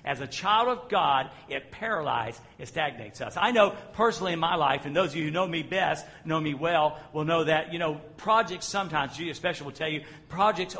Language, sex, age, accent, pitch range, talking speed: English, male, 50-69, American, 145-195 Hz, 220 wpm